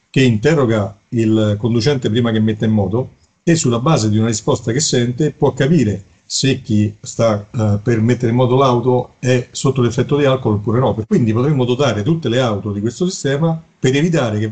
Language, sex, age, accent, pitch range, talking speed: Italian, male, 50-69, native, 110-150 Hz, 195 wpm